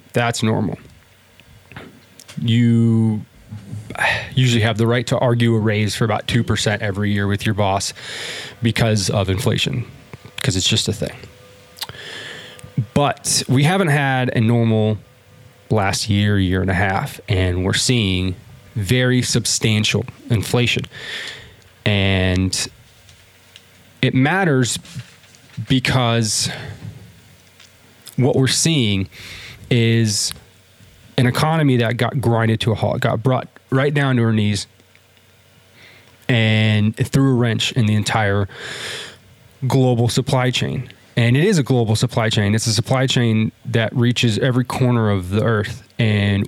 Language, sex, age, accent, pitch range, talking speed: English, male, 20-39, American, 105-125 Hz, 125 wpm